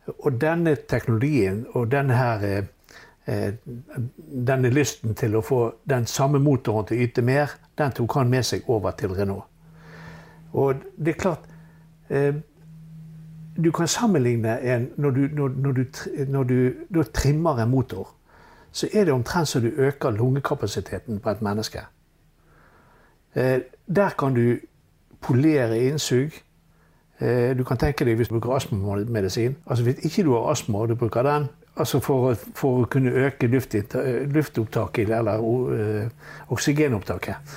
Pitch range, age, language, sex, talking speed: 115-145 Hz, 60-79, English, male, 140 wpm